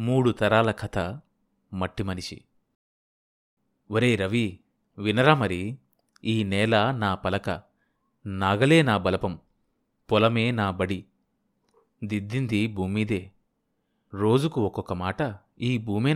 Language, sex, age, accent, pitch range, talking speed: Telugu, male, 30-49, native, 100-130 Hz, 95 wpm